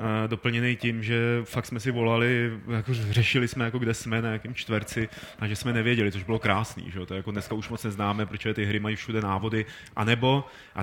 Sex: male